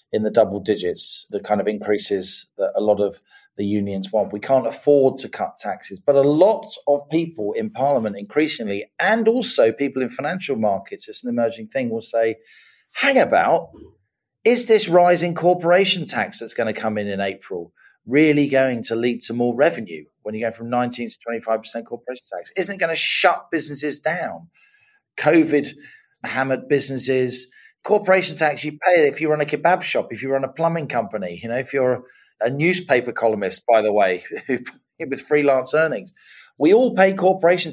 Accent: British